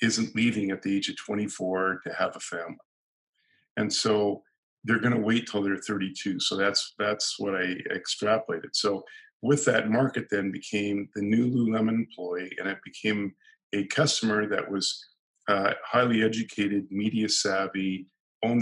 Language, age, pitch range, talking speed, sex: English, 50-69, 100-120 Hz, 155 wpm, male